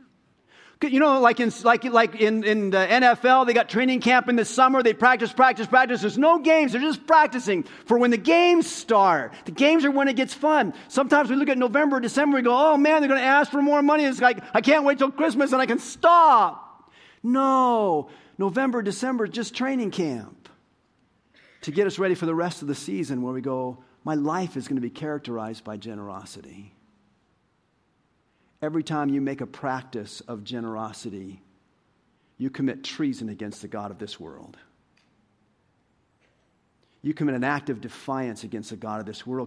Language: English